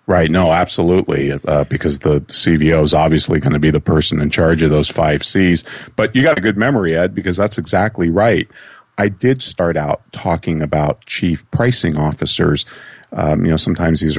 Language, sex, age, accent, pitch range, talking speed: English, male, 40-59, American, 80-95 Hz, 190 wpm